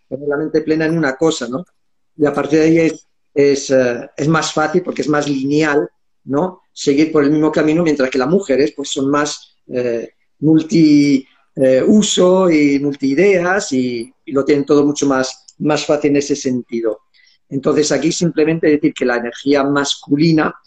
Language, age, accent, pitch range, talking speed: Spanish, 50-69, Spanish, 130-155 Hz, 170 wpm